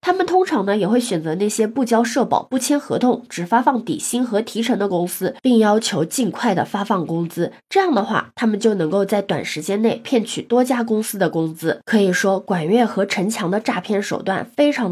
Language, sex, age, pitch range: Chinese, female, 20-39, 195-255 Hz